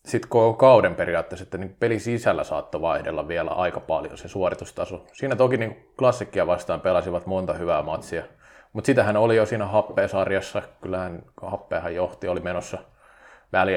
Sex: male